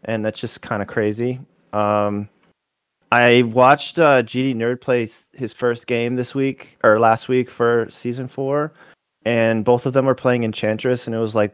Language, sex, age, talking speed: English, male, 30-49, 180 wpm